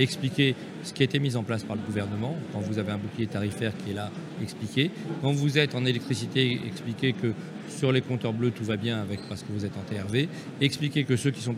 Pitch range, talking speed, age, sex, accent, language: 120-150 Hz, 245 wpm, 40-59, male, French, French